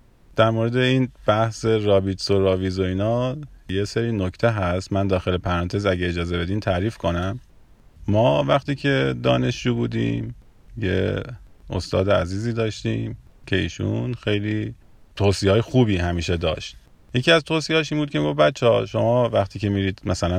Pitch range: 95-115 Hz